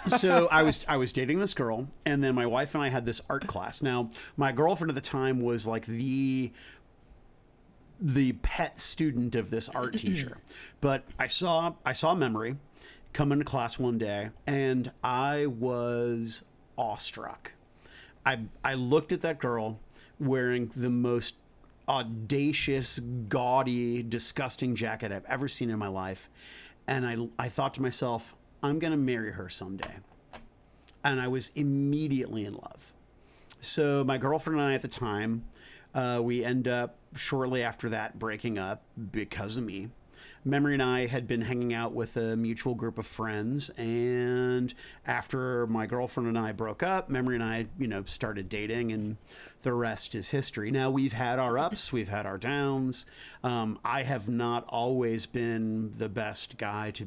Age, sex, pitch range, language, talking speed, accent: 40-59, male, 115-135 Hz, English, 165 wpm, American